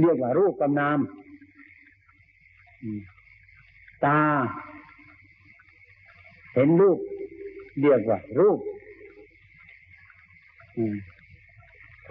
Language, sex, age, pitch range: Thai, male, 60-79, 110-165 Hz